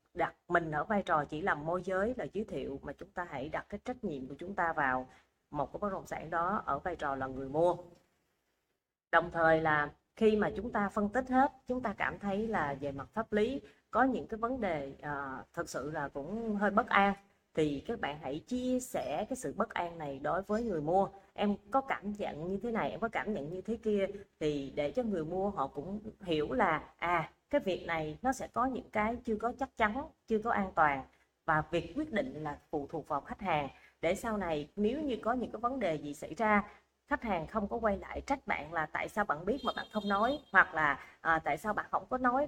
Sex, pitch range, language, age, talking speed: female, 155-230 Hz, Vietnamese, 20-39, 240 wpm